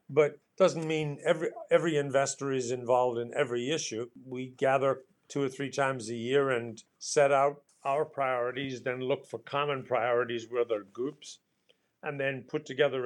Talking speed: 170 wpm